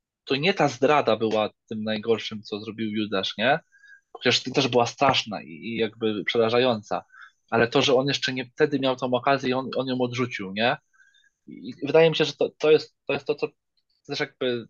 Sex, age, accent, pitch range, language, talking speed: male, 20-39, native, 115-145 Hz, Polish, 190 wpm